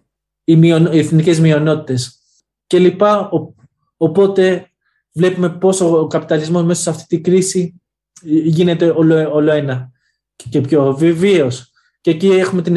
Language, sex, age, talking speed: Greek, male, 20-39, 115 wpm